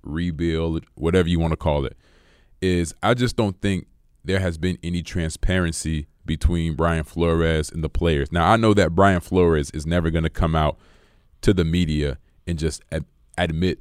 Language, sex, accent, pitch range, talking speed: English, male, American, 80-90 Hz, 180 wpm